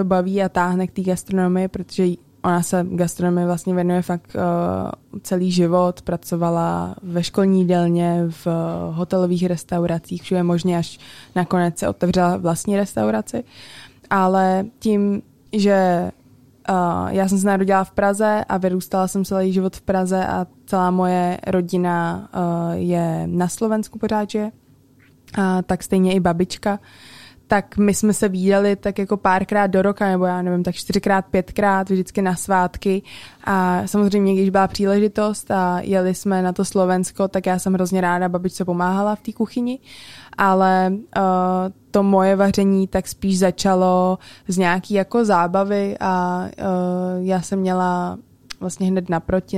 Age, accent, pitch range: 20-39, native, 180-195 Hz